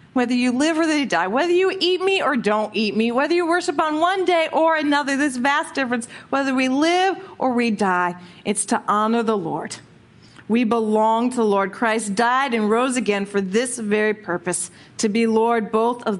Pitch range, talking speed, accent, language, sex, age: 210-265 Hz, 205 wpm, American, English, female, 40-59